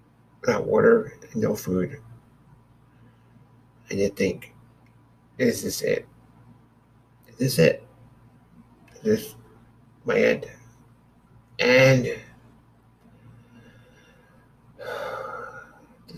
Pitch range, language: 120-145 Hz, English